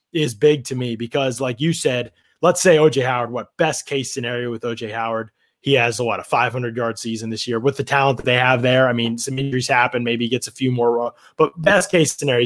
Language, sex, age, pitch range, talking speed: English, male, 20-39, 120-165 Hz, 250 wpm